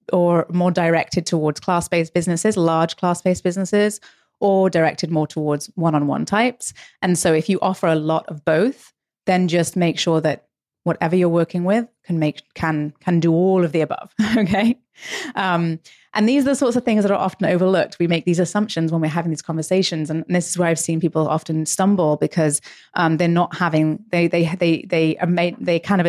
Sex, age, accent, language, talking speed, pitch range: female, 30-49, British, English, 200 wpm, 160-190 Hz